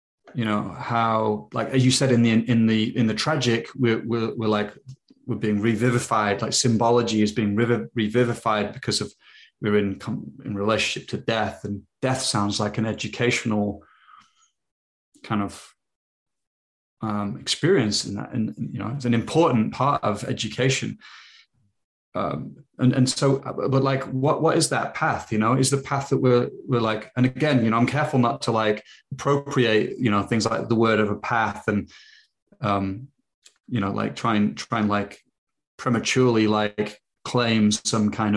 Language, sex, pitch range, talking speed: English, male, 105-125 Hz, 170 wpm